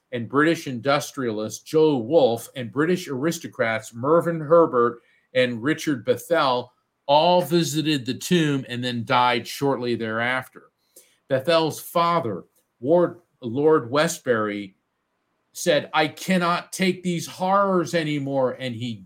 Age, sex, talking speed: 50-69, male, 110 wpm